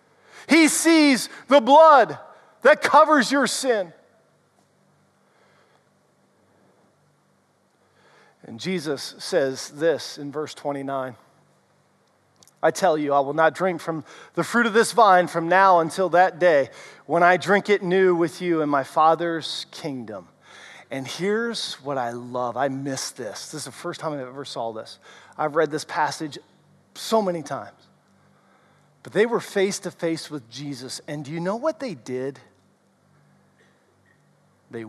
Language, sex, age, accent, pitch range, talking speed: English, male, 40-59, American, 135-190 Hz, 145 wpm